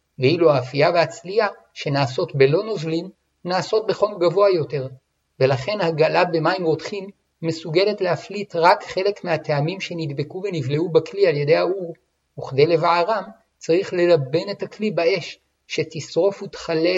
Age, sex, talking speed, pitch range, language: 60-79, male, 120 wpm, 150-190 Hz, Hebrew